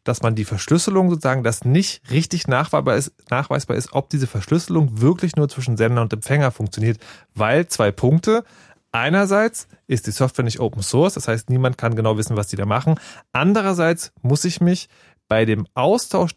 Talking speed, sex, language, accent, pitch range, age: 170 wpm, male, German, German, 110-165 Hz, 30-49